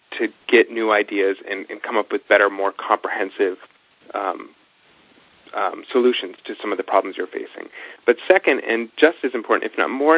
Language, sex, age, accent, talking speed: English, male, 30-49, American, 185 wpm